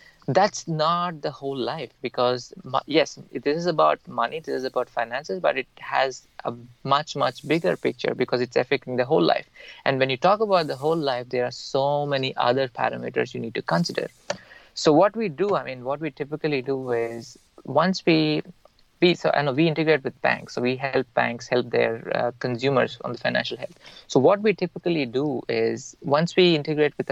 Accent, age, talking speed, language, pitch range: Indian, 20-39, 200 wpm, English, 125-155 Hz